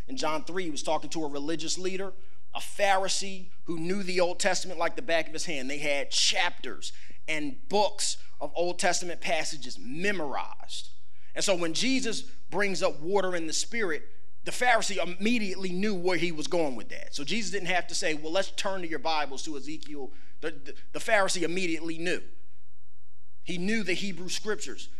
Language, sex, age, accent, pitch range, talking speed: English, male, 30-49, American, 150-195 Hz, 185 wpm